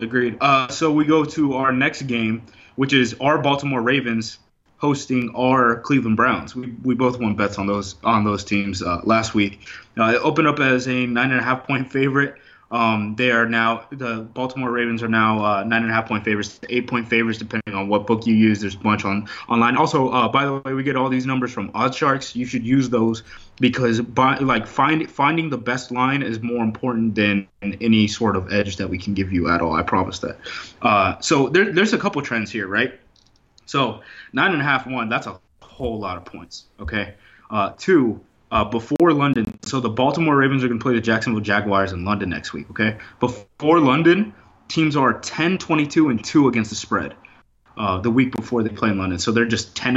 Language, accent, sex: English, American, male